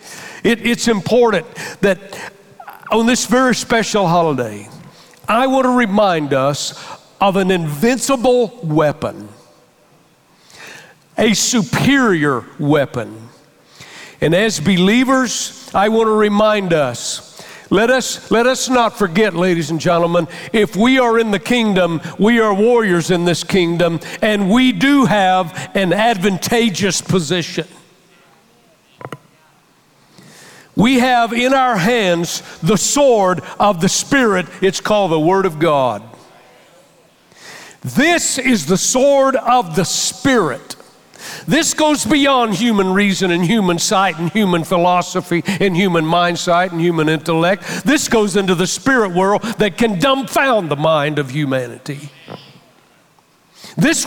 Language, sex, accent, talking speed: English, male, American, 120 wpm